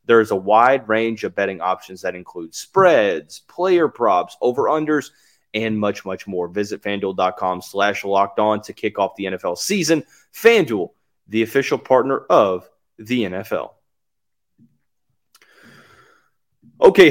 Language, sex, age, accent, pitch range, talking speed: English, male, 30-49, American, 100-140 Hz, 135 wpm